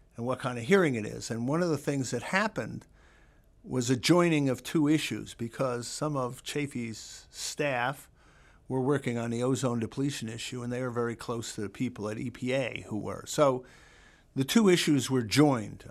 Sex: male